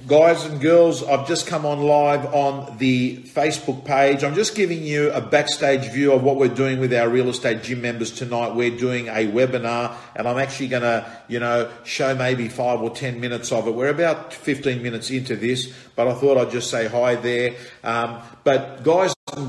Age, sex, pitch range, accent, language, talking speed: 50-69, male, 120-145 Hz, Australian, English, 205 wpm